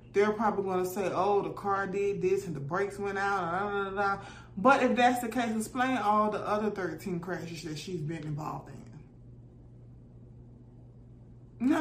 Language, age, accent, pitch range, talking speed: English, 20-39, American, 160-205 Hz, 190 wpm